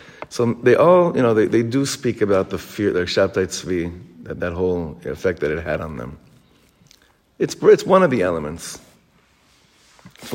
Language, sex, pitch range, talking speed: English, male, 110-140 Hz, 180 wpm